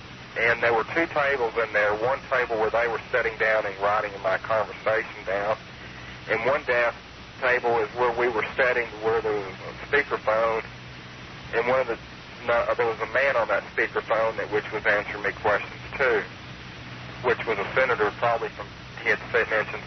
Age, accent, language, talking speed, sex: 50-69, American, English, 185 wpm, male